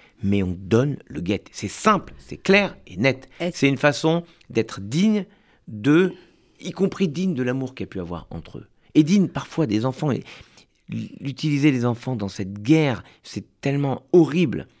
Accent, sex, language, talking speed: French, male, French, 175 wpm